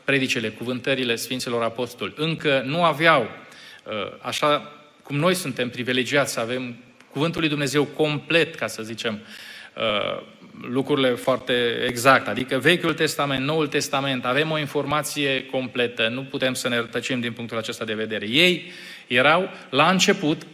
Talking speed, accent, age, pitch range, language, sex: 135 wpm, native, 20-39, 125-155 Hz, Romanian, male